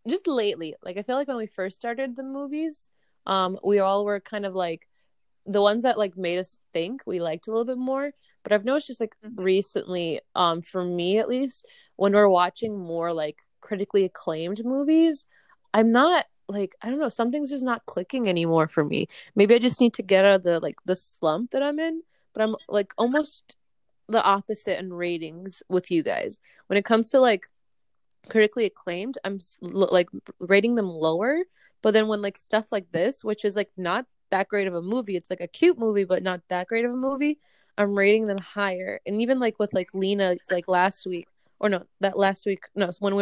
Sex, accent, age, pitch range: female, American, 20-39, 185-235 Hz